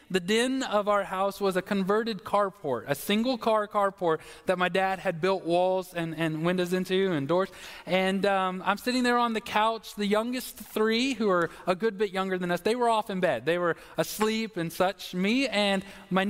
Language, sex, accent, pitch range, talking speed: English, male, American, 180-220 Hz, 210 wpm